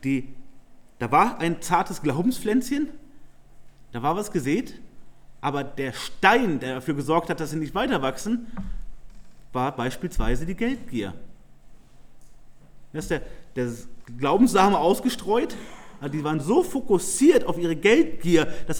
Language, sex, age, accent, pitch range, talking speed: German, male, 30-49, German, 150-220 Hz, 130 wpm